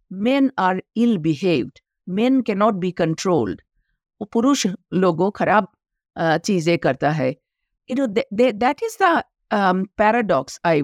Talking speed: 95 wpm